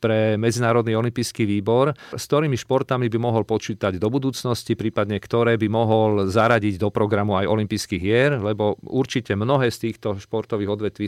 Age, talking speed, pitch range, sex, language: 40-59, 155 wpm, 100-115 Hz, male, Slovak